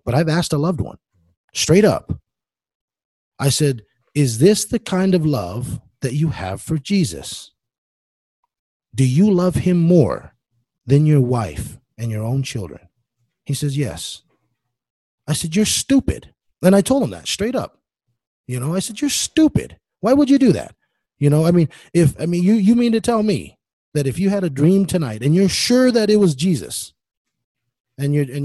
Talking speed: 185 wpm